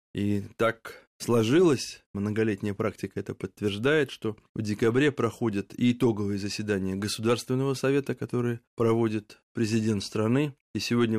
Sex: male